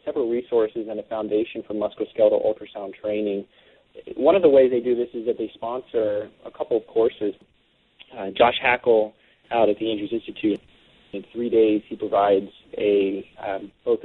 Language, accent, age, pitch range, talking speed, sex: English, American, 30-49, 105-140 Hz, 170 wpm, male